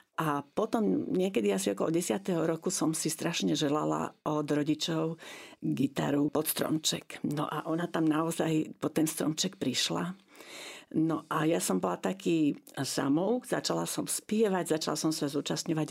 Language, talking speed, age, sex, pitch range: Slovak, 145 wpm, 50-69, female, 155-200 Hz